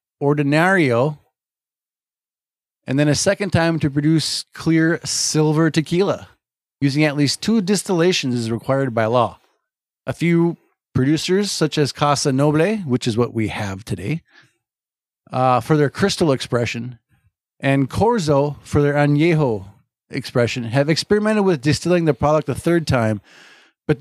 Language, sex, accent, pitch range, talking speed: English, male, American, 130-170 Hz, 135 wpm